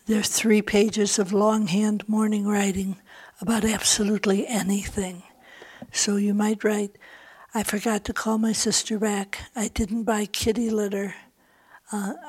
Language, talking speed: English, 135 wpm